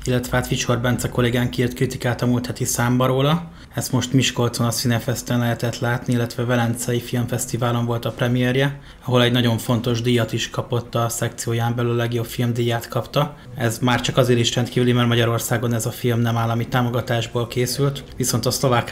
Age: 20-39